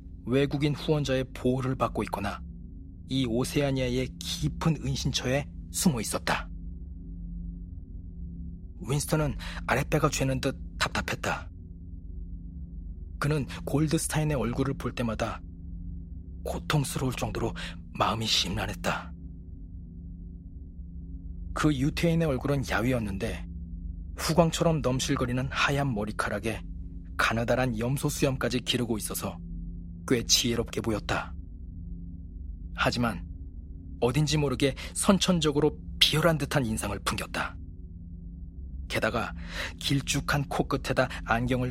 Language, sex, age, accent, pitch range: Korean, male, 40-59, native, 85-135 Hz